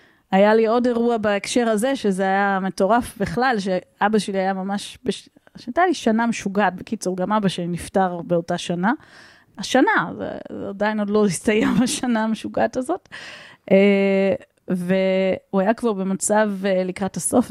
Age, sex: 20-39, female